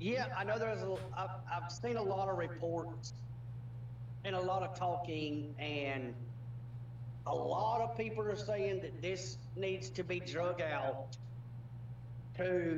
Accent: American